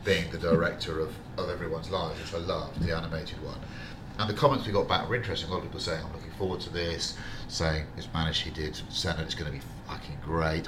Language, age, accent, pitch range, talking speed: English, 40-59, British, 95-120 Hz, 240 wpm